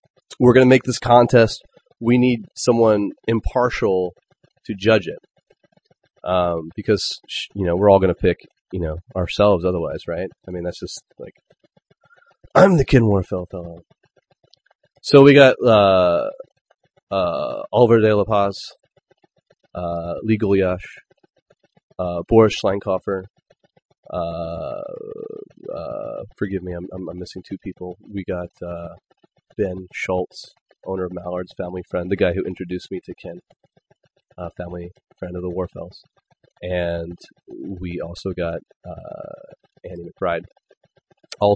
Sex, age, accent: male, 30-49, American